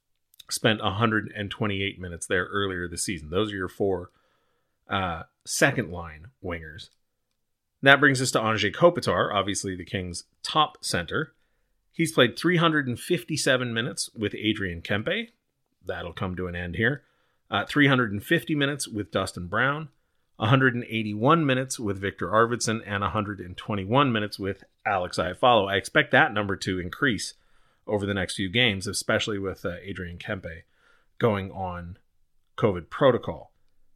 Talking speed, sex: 135 wpm, male